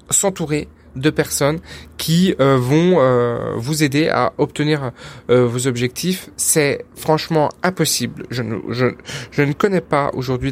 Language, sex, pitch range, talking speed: French, male, 125-160 Hz, 145 wpm